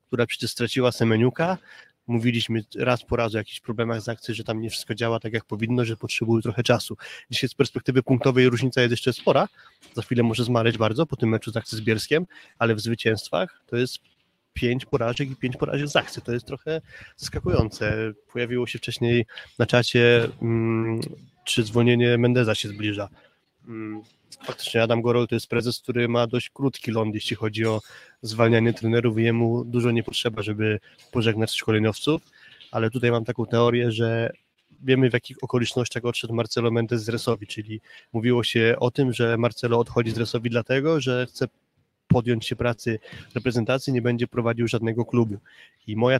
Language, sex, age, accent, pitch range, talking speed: Polish, male, 20-39, native, 115-125 Hz, 175 wpm